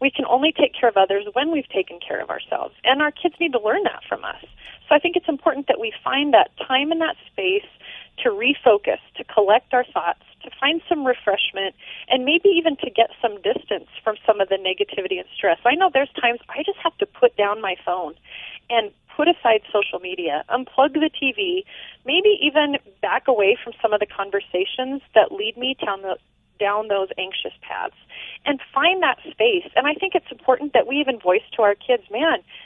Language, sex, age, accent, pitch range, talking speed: English, female, 30-49, American, 215-335 Hz, 210 wpm